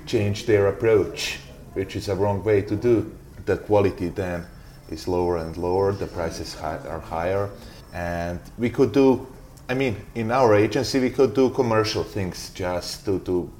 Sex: male